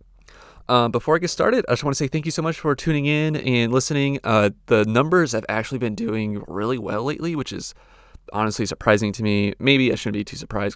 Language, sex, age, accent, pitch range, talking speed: English, male, 30-49, American, 105-130 Hz, 230 wpm